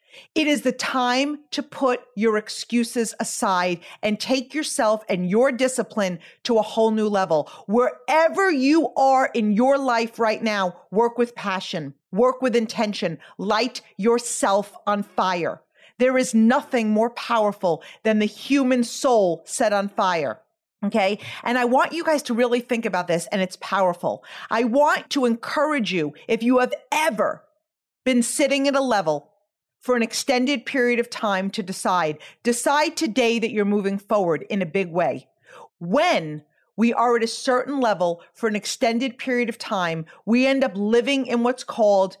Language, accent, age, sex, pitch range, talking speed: English, American, 40-59, female, 205-260 Hz, 165 wpm